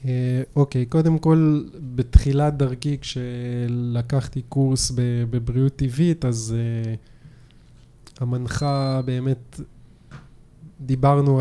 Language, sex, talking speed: Hebrew, male, 80 wpm